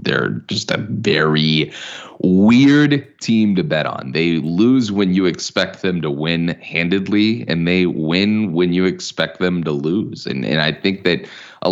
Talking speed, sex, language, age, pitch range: 170 wpm, male, English, 20-39, 80-100 Hz